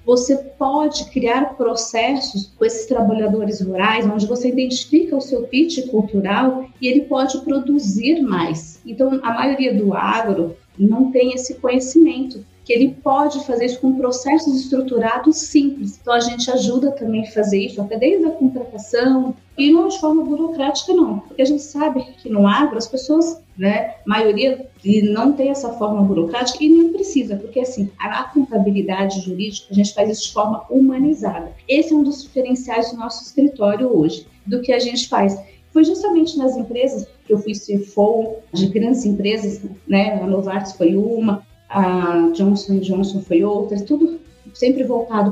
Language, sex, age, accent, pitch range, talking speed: Portuguese, female, 30-49, Brazilian, 210-270 Hz, 170 wpm